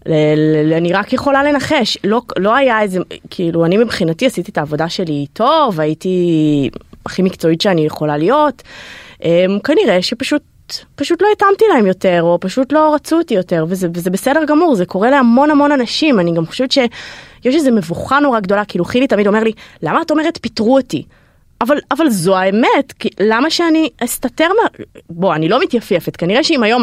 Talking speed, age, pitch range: 180 wpm, 20-39, 175-260 Hz